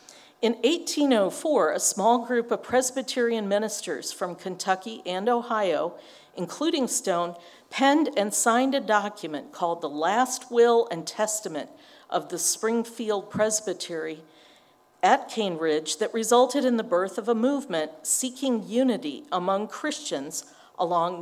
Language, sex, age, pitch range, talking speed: English, female, 50-69, 175-235 Hz, 125 wpm